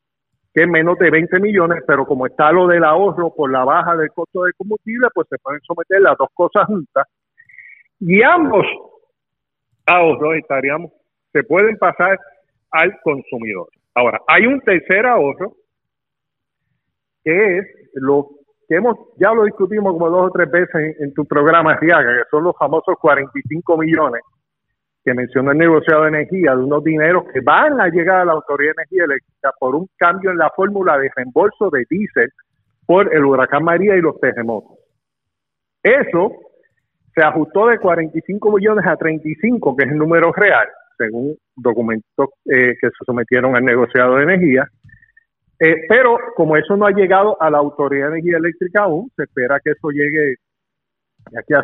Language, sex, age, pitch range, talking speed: Spanish, male, 50-69, 140-190 Hz, 170 wpm